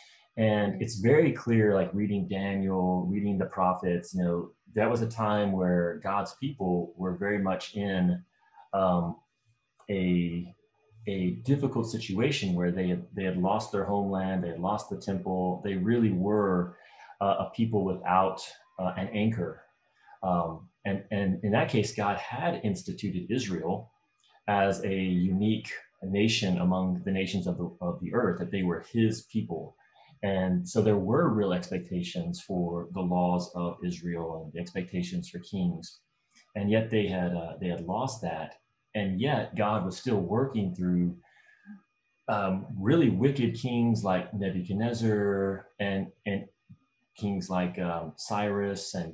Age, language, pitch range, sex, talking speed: 30-49, English, 90-105 Hz, male, 150 wpm